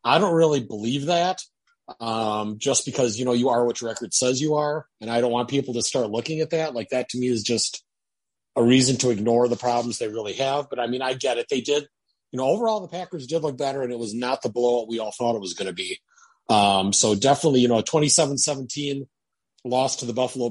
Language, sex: English, male